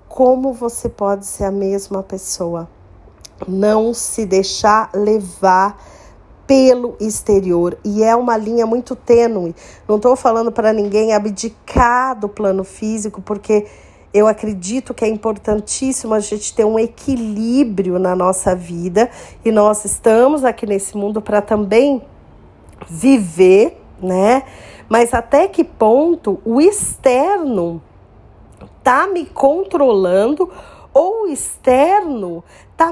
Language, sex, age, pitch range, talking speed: Portuguese, female, 40-59, 210-265 Hz, 120 wpm